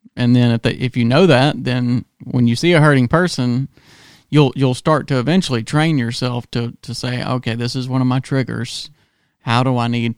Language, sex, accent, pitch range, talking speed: English, male, American, 115-135 Hz, 205 wpm